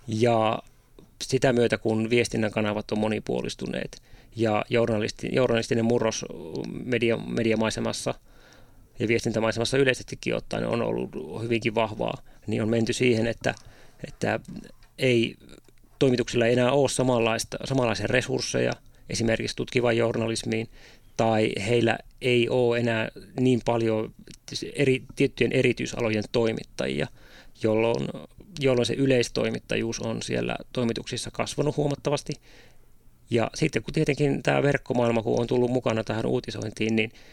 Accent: native